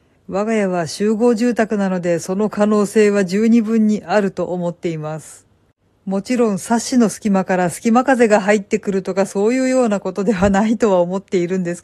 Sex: female